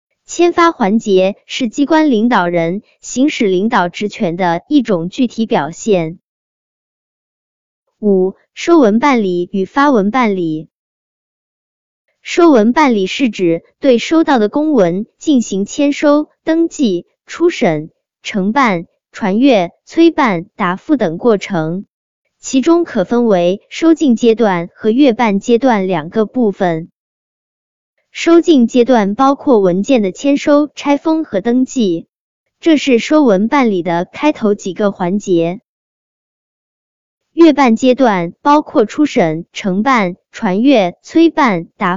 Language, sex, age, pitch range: Chinese, male, 20-39, 185-280 Hz